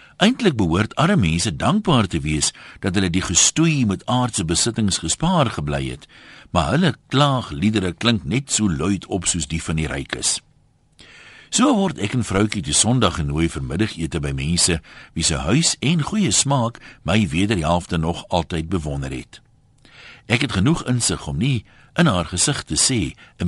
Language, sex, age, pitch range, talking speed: Dutch, male, 60-79, 80-125 Hz, 170 wpm